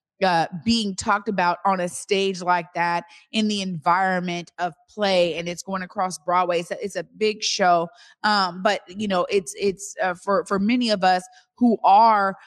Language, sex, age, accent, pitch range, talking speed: English, female, 30-49, American, 175-205 Hz, 185 wpm